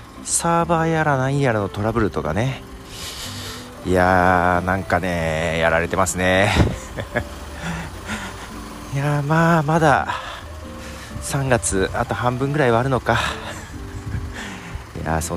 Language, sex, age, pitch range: Japanese, male, 40-59, 85-120 Hz